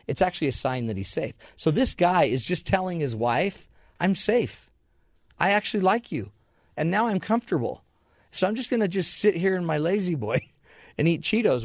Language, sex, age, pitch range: English, male, 40-59, 110-145 Hz